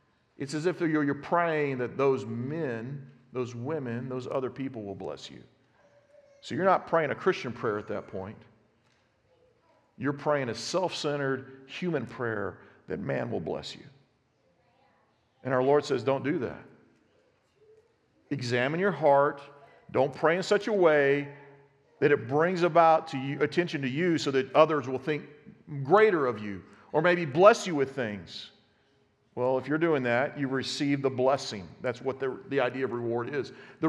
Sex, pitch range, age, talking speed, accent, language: male, 130-155 Hz, 40-59, 170 wpm, American, English